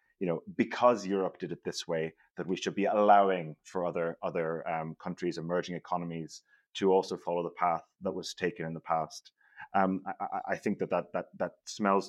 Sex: male